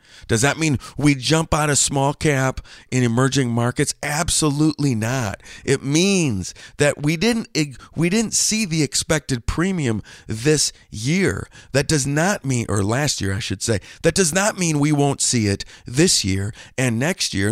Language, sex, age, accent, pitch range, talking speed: English, male, 40-59, American, 110-155 Hz, 170 wpm